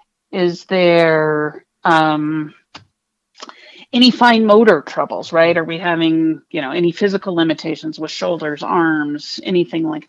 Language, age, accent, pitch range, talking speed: English, 40-59, American, 170-205 Hz, 125 wpm